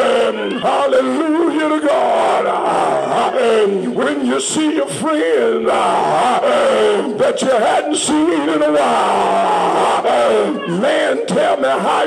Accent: American